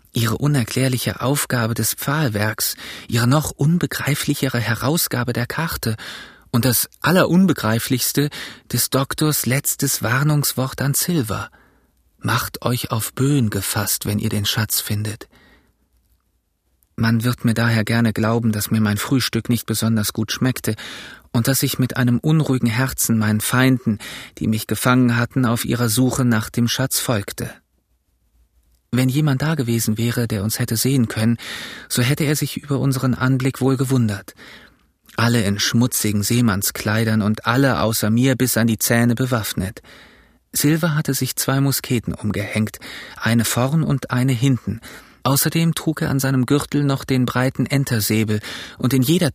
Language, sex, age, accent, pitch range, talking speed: German, male, 40-59, German, 110-135 Hz, 145 wpm